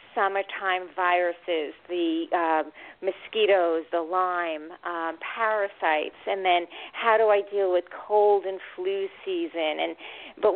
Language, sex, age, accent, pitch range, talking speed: English, female, 40-59, American, 175-225 Hz, 125 wpm